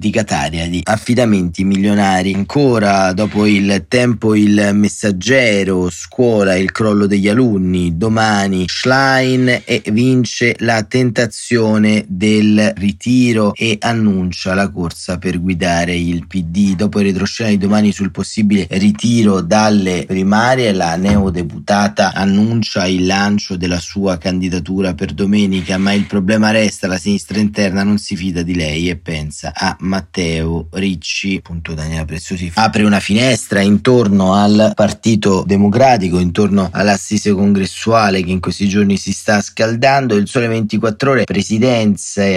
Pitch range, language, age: 95-110 Hz, Italian, 30-49